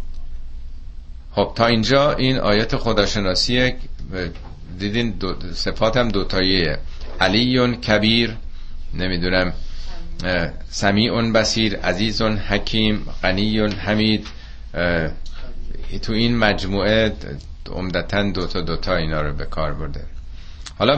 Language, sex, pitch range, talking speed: Persian, male, 75-100 Hz, 110 wpm